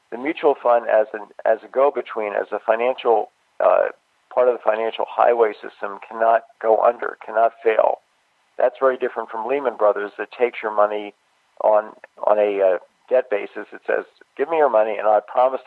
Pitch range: 105-115 Hz